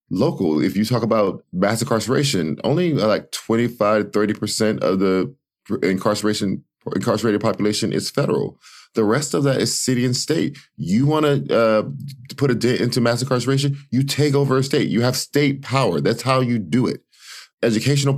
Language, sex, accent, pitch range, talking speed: English, male, American, 100-130 Hz, 165 wpm